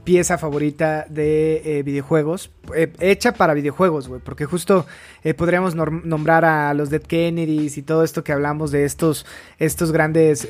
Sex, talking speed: male, 160 wpm